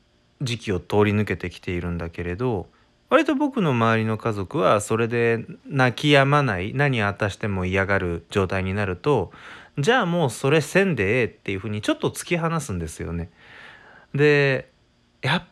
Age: 20-39